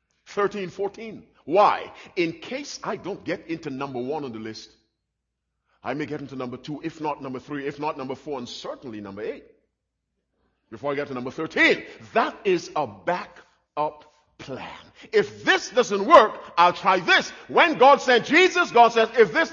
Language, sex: English, male